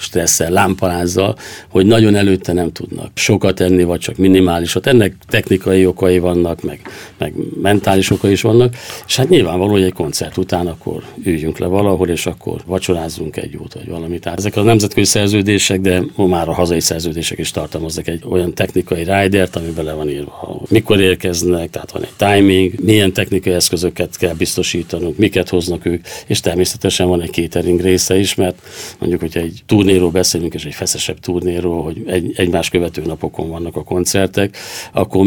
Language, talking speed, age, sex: Hungarian, 170 wpm, 50-69, male